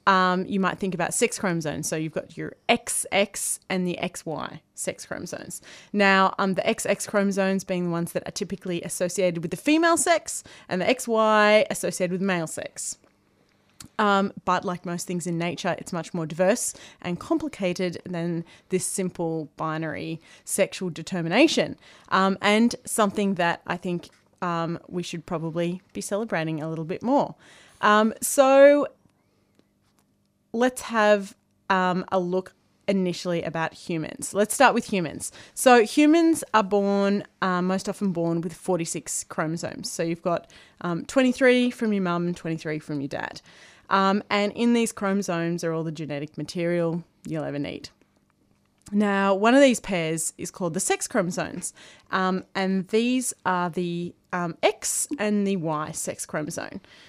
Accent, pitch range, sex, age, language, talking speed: Australian, 170-210 Hz, female, 20-39, English, 155 wpm